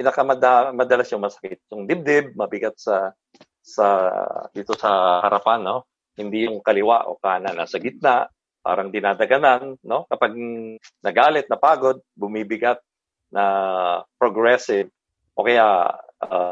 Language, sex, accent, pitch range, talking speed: English, male, Filipino, 105-150 Hz, 120 wpm